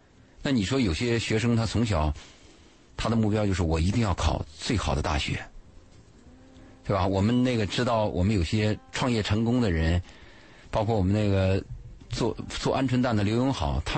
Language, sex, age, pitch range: Chinese, male, 50-69, 85-125 Hz